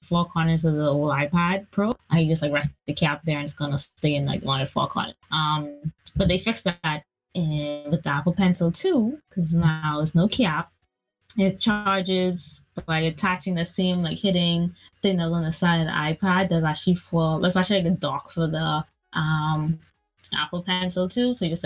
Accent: American